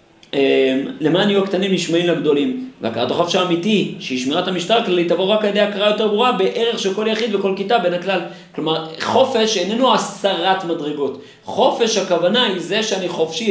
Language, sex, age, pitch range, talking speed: Hebrew, male, 40-59, 155-200 Hz, 175 wpm